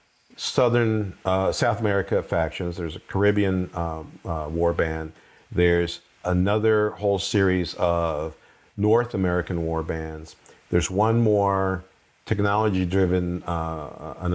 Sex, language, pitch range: male, English, 85-105 Hz